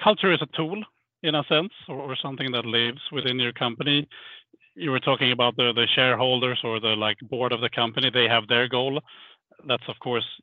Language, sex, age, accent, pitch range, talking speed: English, male, 30-49, Norwegian, 110-135 Hz, 200 wpm